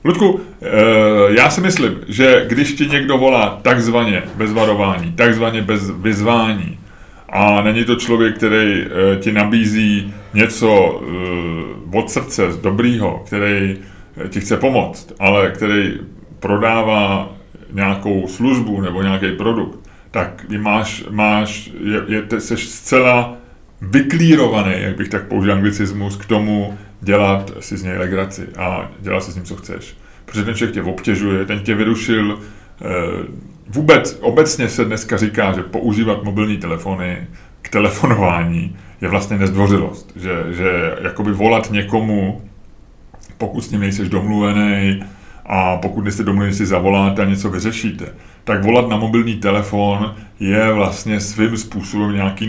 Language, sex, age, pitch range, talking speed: Czech, male, 30-49, 95-110 Hz, 130 wpm